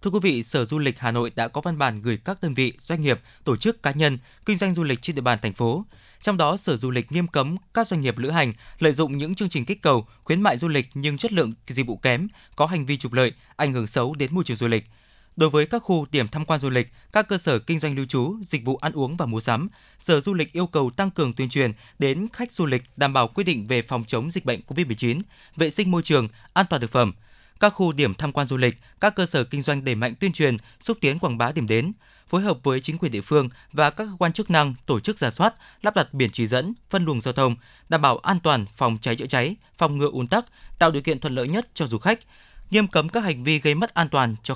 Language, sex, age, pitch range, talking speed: Vietnamese, male, 20-39, 125-175 Hz, 280 wpm